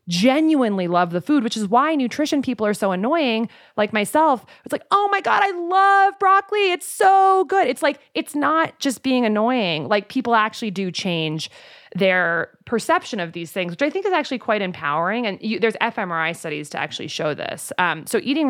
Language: English